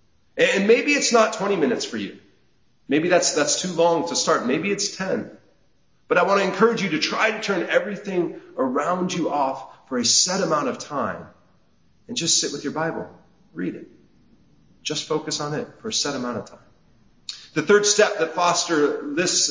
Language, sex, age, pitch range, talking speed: English, male, 40-59, 145-200 Hz, 190 wpm